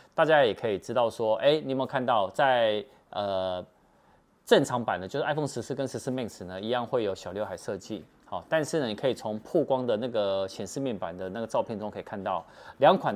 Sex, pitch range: male, 100-135 Hz